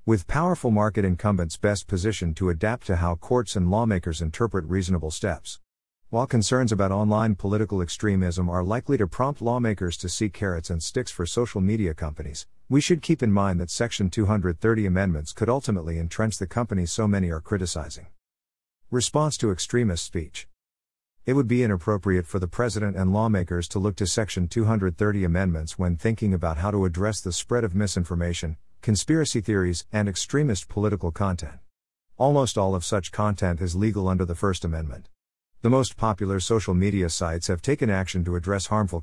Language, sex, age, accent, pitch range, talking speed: English, male, 50-69, American, 85-110 Hz, 170 wpm